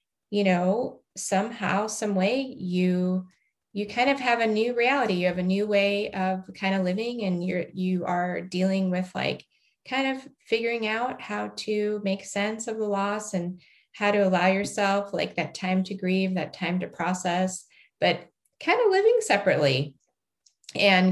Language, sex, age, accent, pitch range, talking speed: English, female, 30-49, American, 180-230 Hz, 170 wpm